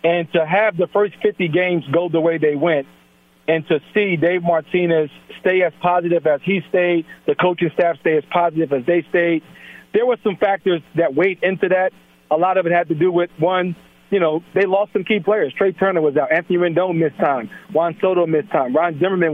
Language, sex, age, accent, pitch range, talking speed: English, male, 40-59, American, 165-190 Hz, 215 wpm